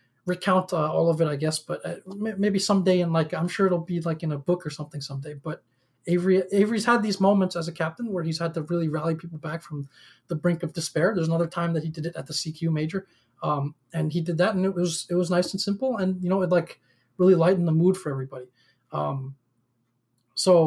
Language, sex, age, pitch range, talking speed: English, male, 20-39, 150-190 Hz, 240 wpm